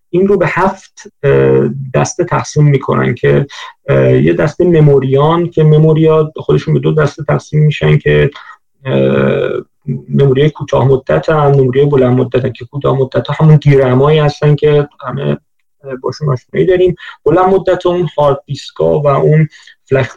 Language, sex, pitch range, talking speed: Persian, male, 135-160 Hz, 135 wpm